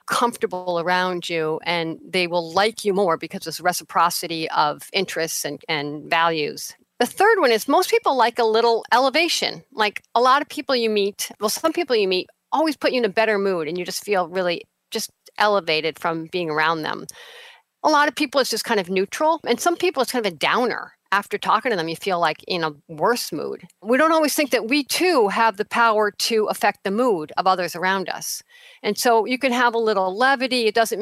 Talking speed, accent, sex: 220 wpm, American, female